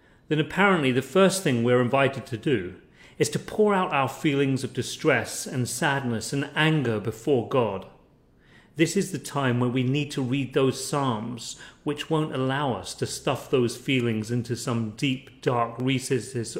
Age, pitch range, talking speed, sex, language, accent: 40-59, 120-145 Hz, 170 wpm, male, English, British